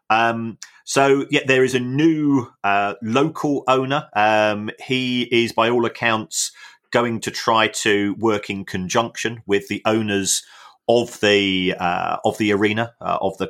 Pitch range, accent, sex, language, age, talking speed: 95-115 Hz, British, male, English, 30-49, 160 wpm